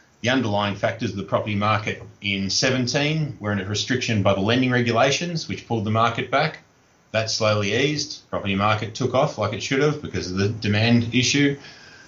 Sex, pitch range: male, 105-125 Hz